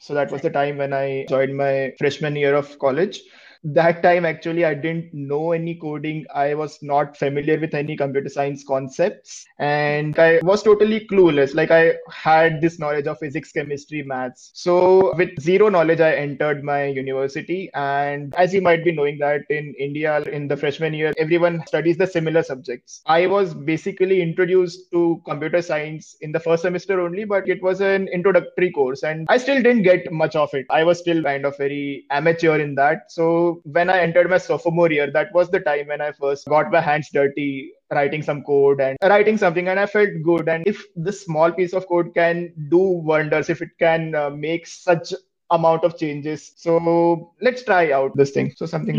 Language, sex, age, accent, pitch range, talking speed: English, male, 20-39, Indian, 145-175 Hz, 195 wpm